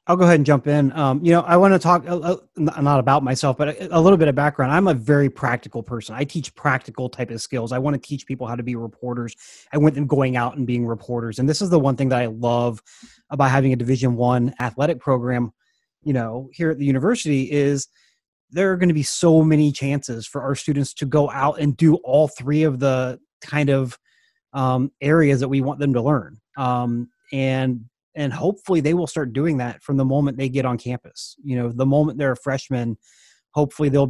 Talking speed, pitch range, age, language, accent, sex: 225 wpm, 125-145 Hz, 30-49, English, American, male